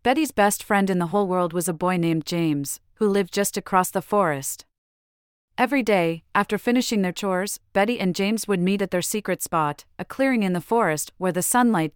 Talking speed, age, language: 205 wpm, 40-59, English